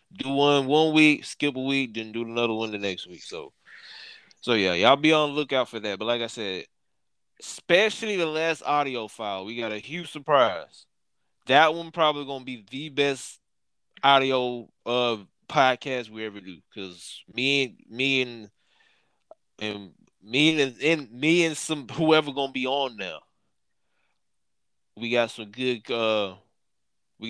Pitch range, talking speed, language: 115-150 Hz, 150 wpm, English